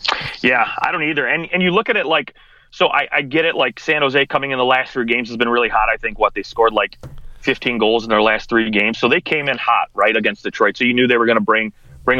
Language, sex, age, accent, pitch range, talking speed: English, male, 30-49, American, 110-140 Hz, 290 wpm